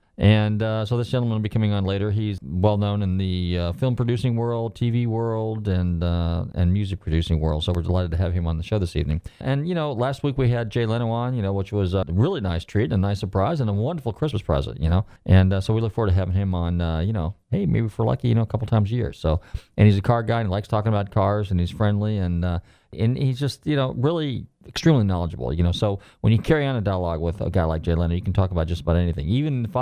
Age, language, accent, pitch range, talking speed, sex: 40-59, English, American, 90-115 Hz, 280 wpm, male